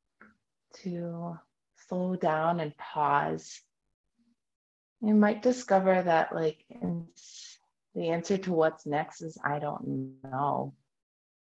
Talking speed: 100 wpm